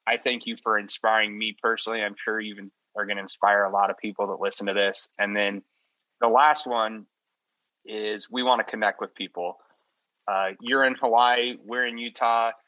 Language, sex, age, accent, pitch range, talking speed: English, male, 20-39, American, 105-125 Hz, 195 wpm